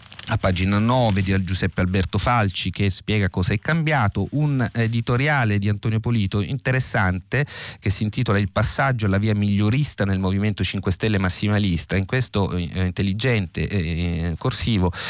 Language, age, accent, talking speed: Italian, 30-49, native, 145 wpm